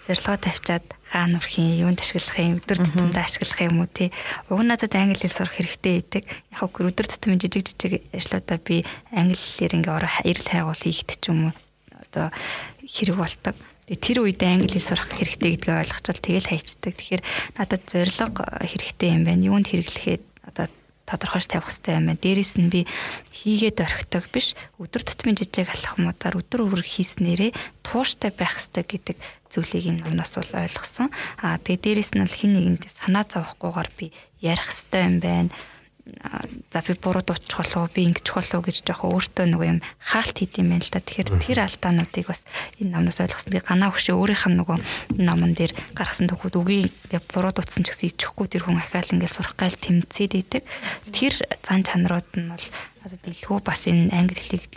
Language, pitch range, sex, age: Russian, 175-195 Hz, female, 20-39